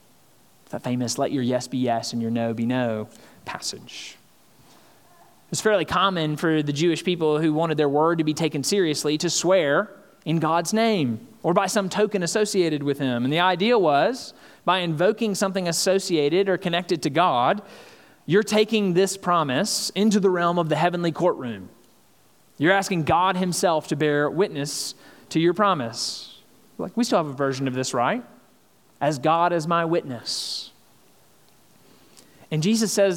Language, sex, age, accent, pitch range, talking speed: English, male, 30-49, American, 155-205 Hz, 165 wpm